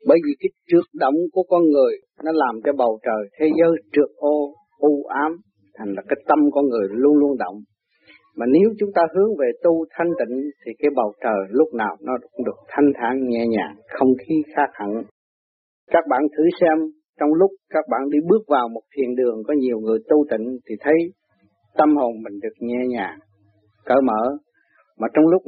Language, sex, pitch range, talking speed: Vietnamese, male, 125-170 Hz, 205 wpm